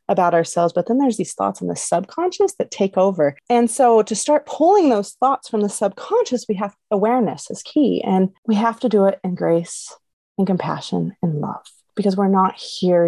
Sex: female